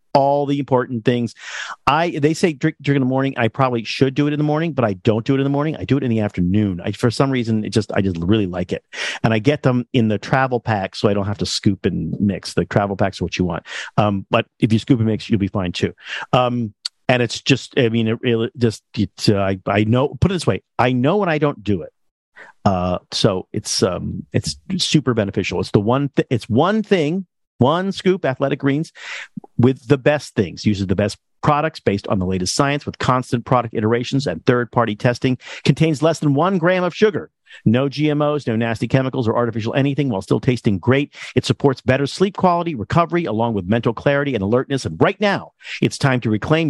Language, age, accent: English, 50-69, American